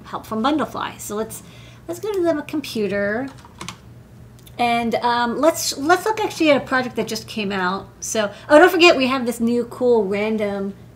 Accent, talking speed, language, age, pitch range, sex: American, 180 wpm, English, 30-49, 210-260 Hz, female